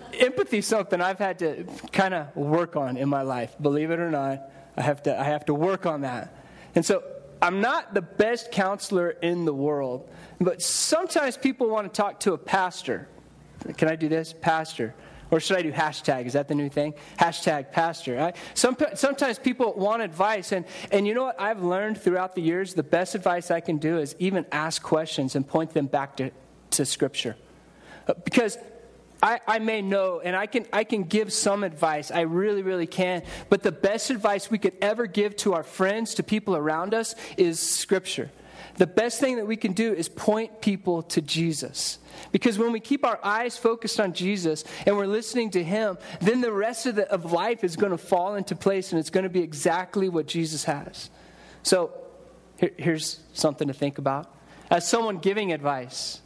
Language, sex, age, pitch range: English, male, 30-49, 155-215 Hz